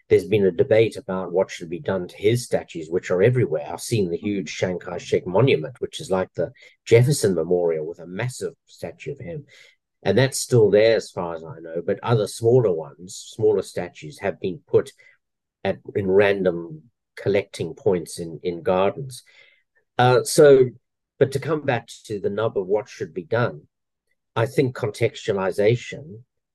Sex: male